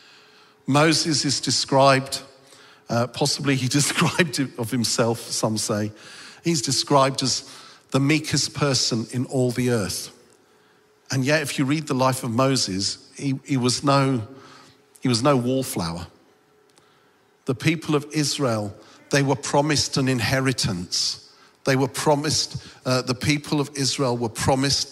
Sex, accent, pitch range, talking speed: male, British, 125-150 Hz, 140 wpm